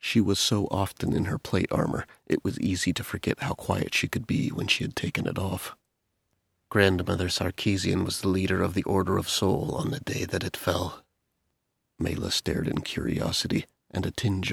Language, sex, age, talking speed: English, male, 30-49, 195 wpm